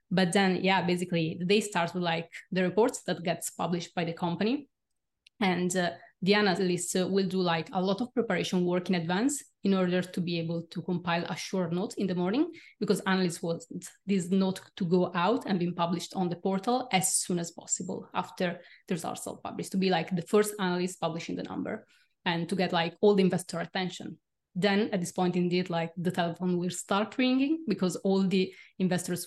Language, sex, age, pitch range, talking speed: English, female, 20-39, 175-200 Hz, 205 wpm